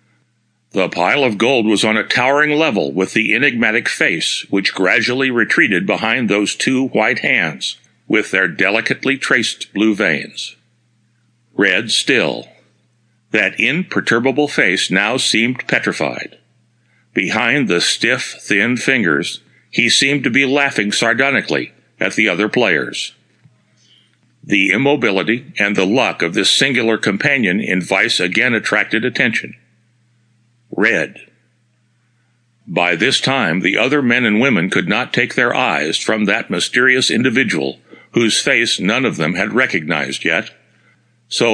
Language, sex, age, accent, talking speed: English, male, 60-79, American, 130 wpm